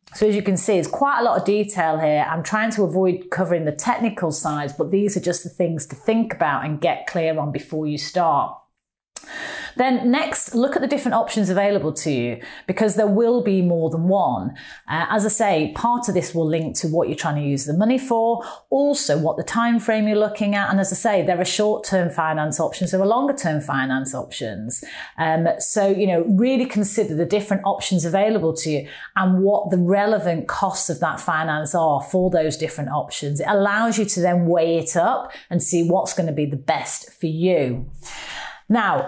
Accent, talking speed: British, 215 wpm